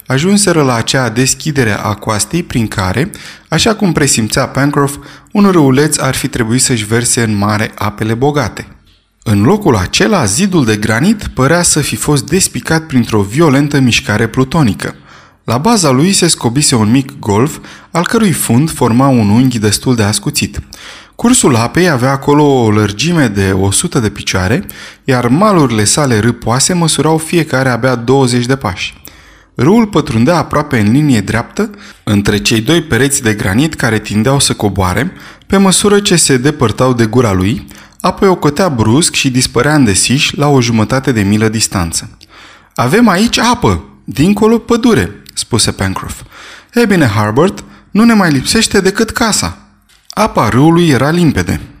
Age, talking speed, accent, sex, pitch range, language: 20-39, 155 wpm, native, male, 110-160 Hz, Romanian